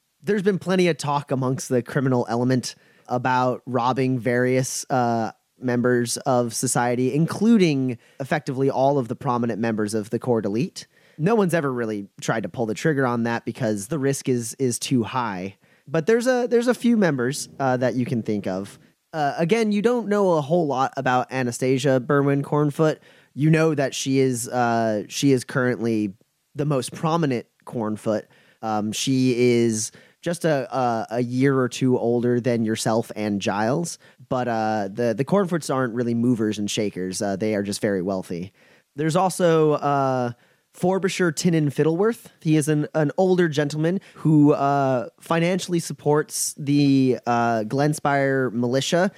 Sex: male